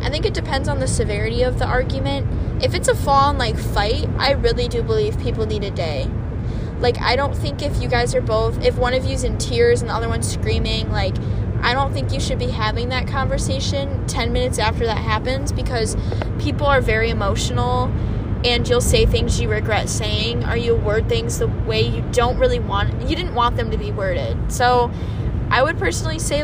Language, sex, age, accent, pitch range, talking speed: English, female, 10-29, American, 100-115 Hz, 215 wpm